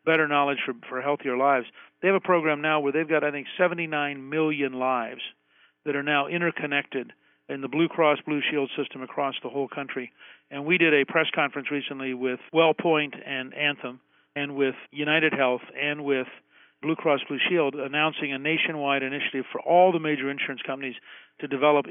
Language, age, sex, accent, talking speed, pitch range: English, 50-69, male, American, 185 wpm, 135-160 Hz